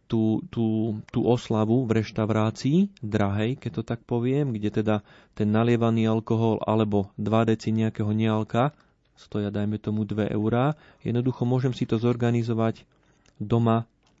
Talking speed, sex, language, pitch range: 135 wpm, male, Slovak, 105-125 Hz